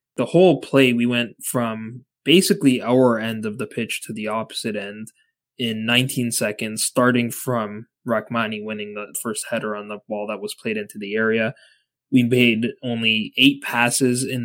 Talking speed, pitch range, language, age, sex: 170 wpm, 110-135 Hz, English, 20-39, male